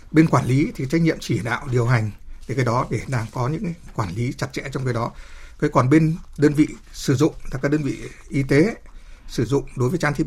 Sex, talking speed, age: male, 250 wpm, 60-79